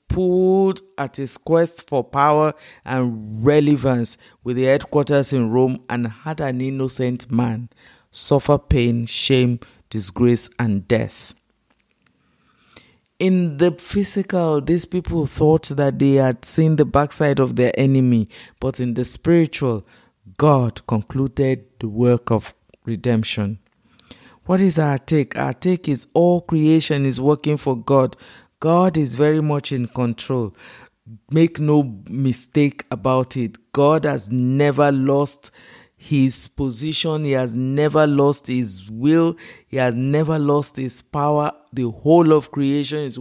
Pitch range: 125-150 Hz